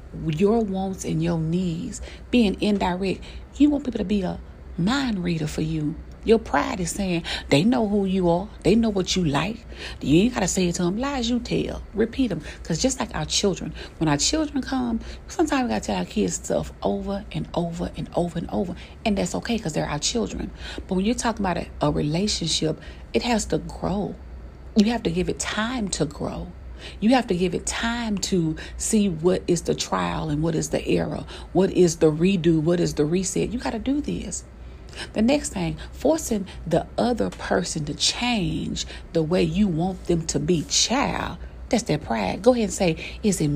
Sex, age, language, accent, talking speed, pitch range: female, 40-59, English, American, 205 wpm, 170-235 Hz